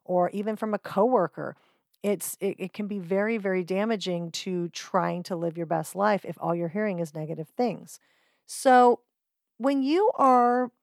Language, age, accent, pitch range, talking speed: English, 40-59, American, 180-225 Hz, 170 wpm